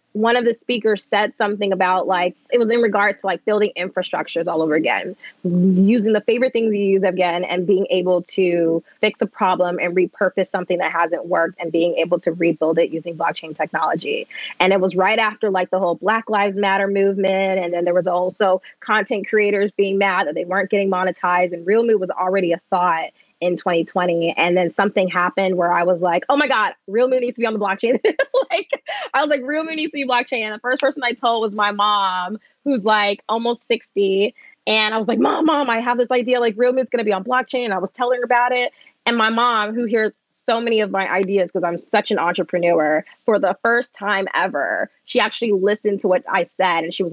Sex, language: female, English